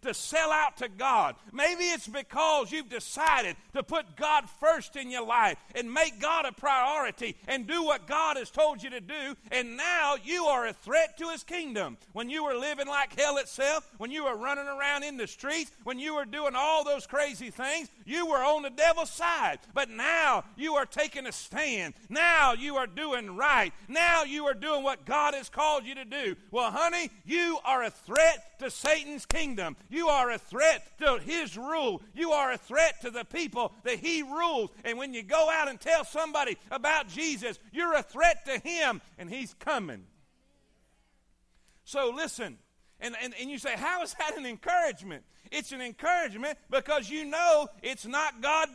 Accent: American